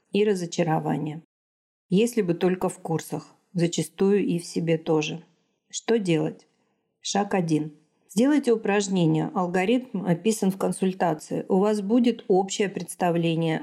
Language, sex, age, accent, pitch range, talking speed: Russian, female, 40-59, native, 165-200 Hz, 120 wpm